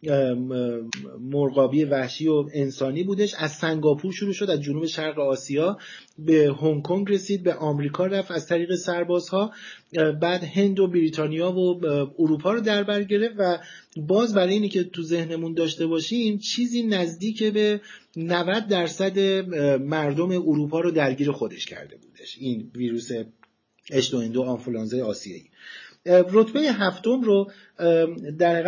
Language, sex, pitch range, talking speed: Persian, male, 145-185 Hz, 130 wpm